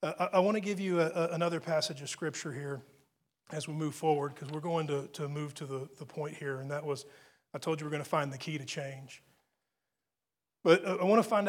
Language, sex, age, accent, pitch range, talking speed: English, male, 40-59, American, 150-180 Hz, 230 wpm